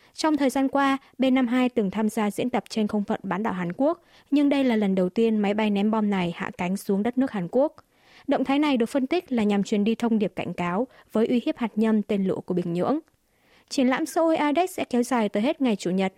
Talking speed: 265 wpm